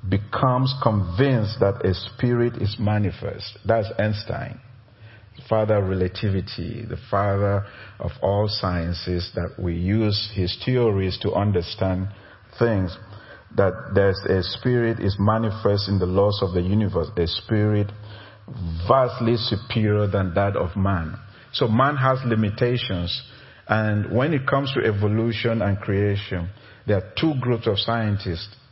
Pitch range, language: 100-120 Hz, English